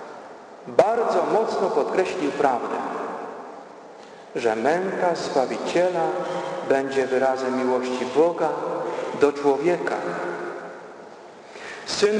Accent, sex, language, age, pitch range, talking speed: native, male, Polish, 50-69, 145-205 Hz, 70 wpm